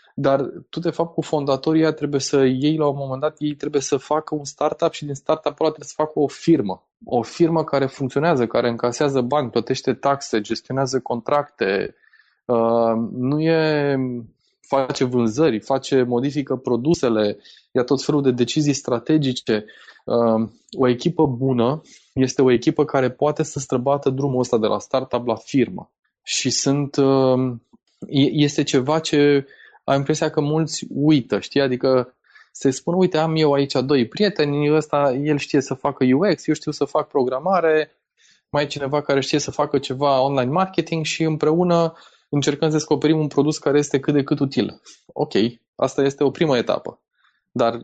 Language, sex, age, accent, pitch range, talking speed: Romanian, male, 20-39, native, 130-155 Hz, 165 wpm